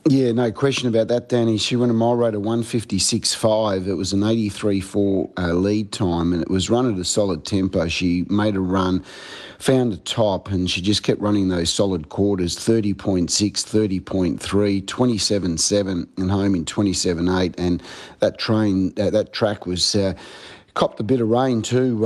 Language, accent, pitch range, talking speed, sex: English, Australian, 95-115 Hz, 170 wpm, male